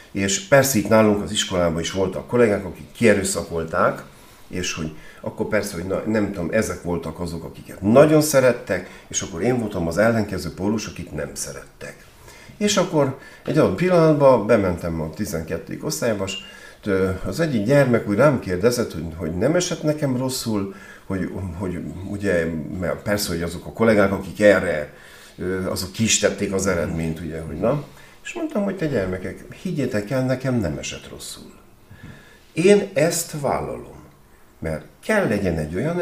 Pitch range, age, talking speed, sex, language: 85-130 Hz, 50-69, 155 wpm, male, Hungarian